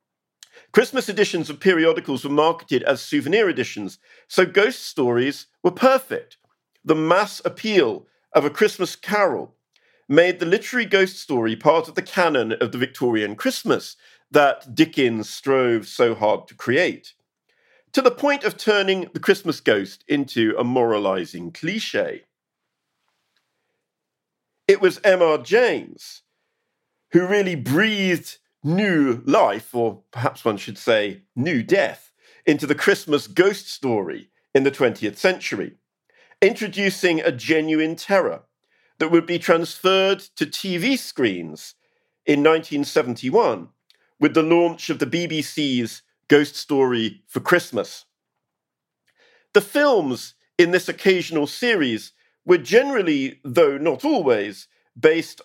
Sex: male